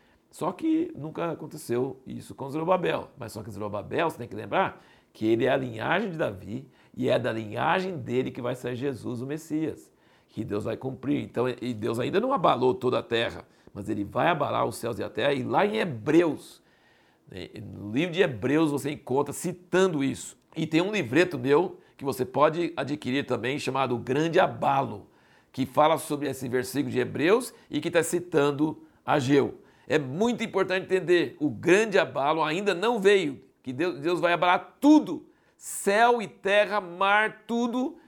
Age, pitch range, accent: 60-79, 125-180 Hz, Brazilian